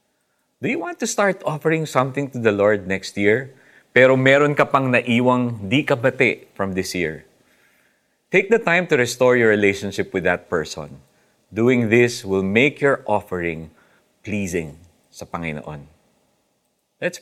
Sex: male